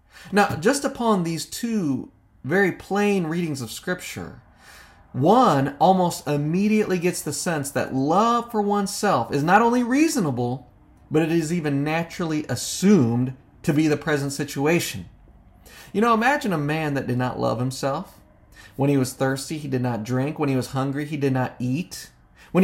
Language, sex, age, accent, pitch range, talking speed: English, male, 30-49, American, 125-180 Hz, 165 wpm